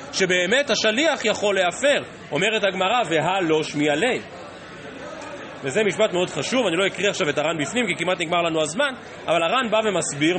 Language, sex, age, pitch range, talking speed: Hebrew, male, 30-49, 170-245 Hz, 170 wpm